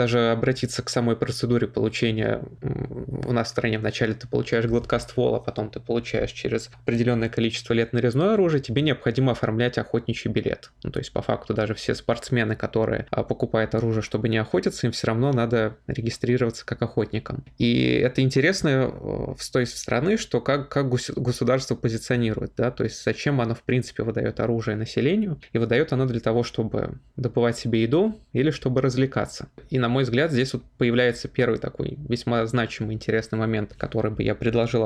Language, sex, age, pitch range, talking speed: Russian, male, 20-39, 115-130 Hz, 170 wpm